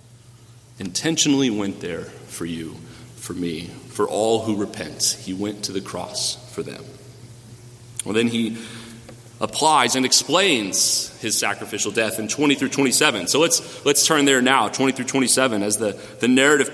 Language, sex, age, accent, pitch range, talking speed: English, male, 30-49, American, 120-160 Hz, 160 wpm